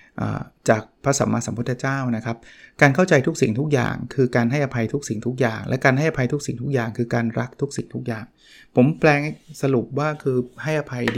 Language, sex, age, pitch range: Thai, male, 20-39, 115-145 Hz